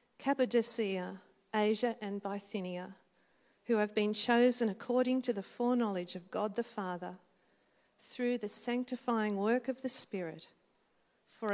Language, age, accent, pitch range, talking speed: English, 50-69, Australian, 190-240 Hz, 125 wpm